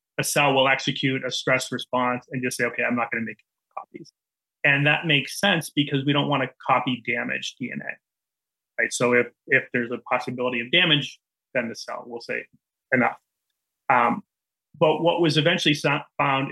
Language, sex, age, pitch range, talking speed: English, male, 30-49, 125-150 Hz, 185 wpm